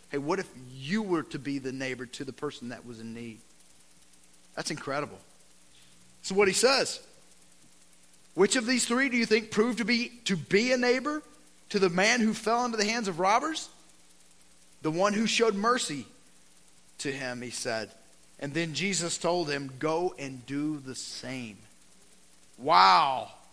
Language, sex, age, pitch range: English, male, 40-59, 130-210 Hz